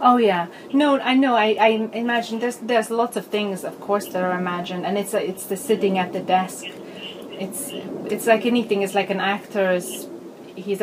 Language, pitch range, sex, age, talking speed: English, 180-230 Hz, female, 30-49, 200 wpm